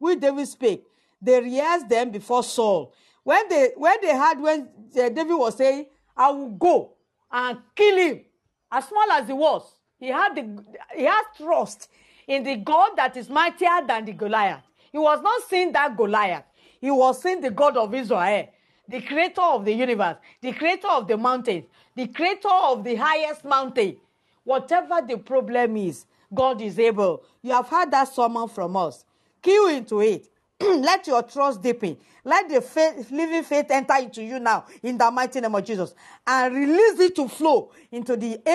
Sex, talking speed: female, 180 wpm